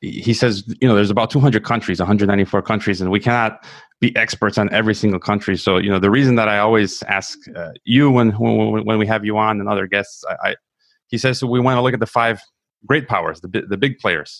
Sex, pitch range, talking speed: male, 100-115 Hz, 240 wpm